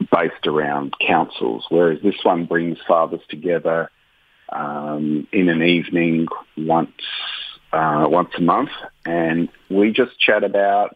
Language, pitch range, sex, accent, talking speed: English, 90-100 Hz, male, Australian, 125 wpm